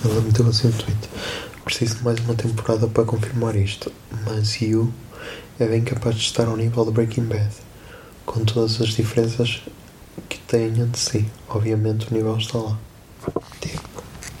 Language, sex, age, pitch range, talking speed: Portuguese, male, 20-39, 110-120 Hz, 160 wpm